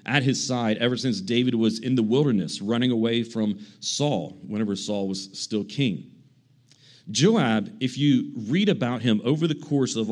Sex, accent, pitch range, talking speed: male, American, 120-160 Hz, 170 wpm